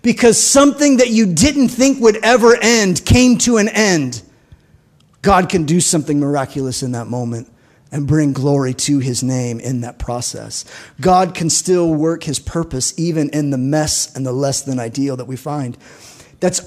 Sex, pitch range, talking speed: male, 140-215 Hz, 175 wpm